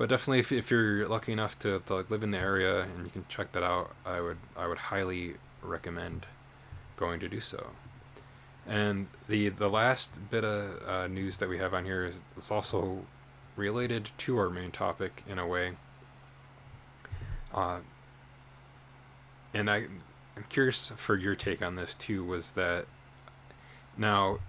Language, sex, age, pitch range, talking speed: English, male, 20-39, 90-110 Hz, 165 wpm